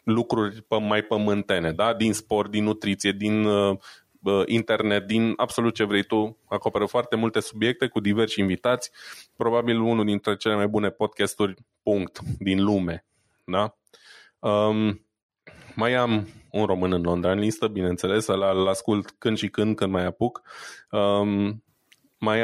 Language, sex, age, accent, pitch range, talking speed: Romanian, male, 20-39, native, 100-115 Hz, 130 wpm